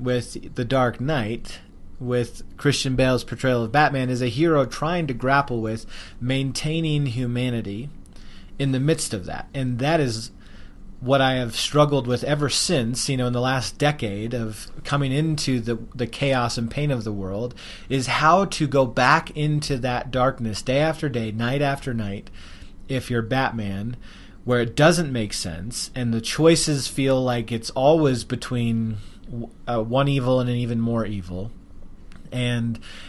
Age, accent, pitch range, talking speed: 30-49, American, 115-140 Hz, 165 wpm